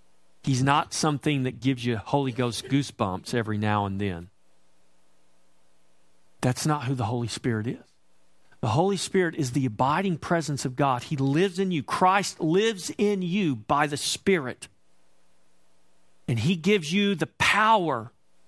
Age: 40-59